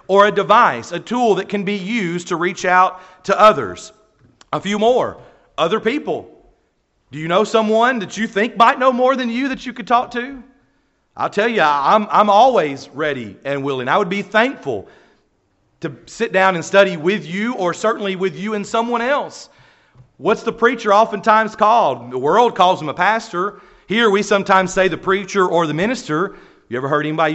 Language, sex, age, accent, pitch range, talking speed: English, male, 40-59, American, 175-230 Hz, 190 wpm